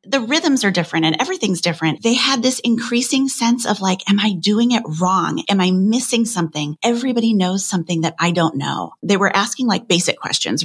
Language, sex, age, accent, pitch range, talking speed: English, female, 30-49, American, 165-215 Hz, 205 wpm